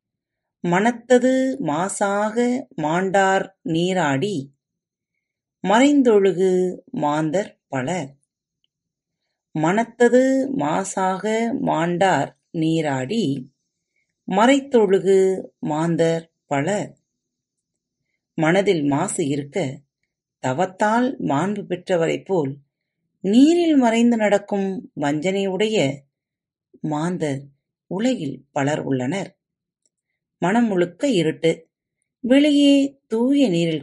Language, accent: Tamil, native